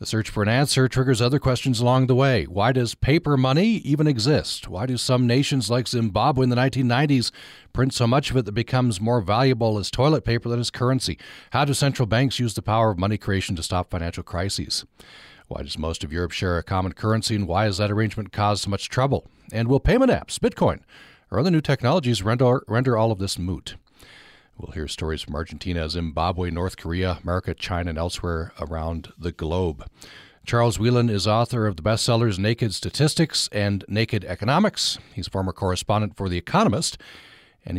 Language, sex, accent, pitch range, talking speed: English, male, American, 90-125 Hz, 195 wpm